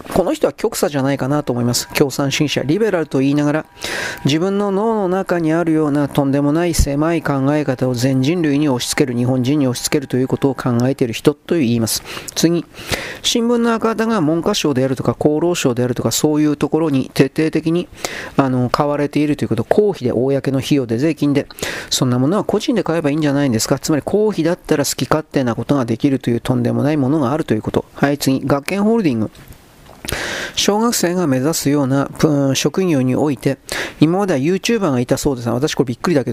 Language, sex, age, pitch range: Japanese, male, 40-59, 130-160 Hz